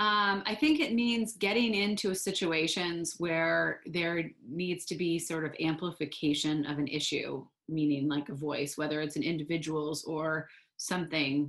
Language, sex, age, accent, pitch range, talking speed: English, female, 30-49, American, 150-180 Hz, 145 wpm